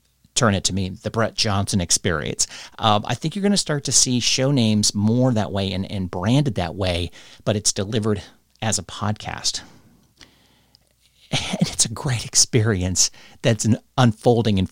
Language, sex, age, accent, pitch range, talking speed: English, male, 50-69, American, 100-135 Hz, 165 wpm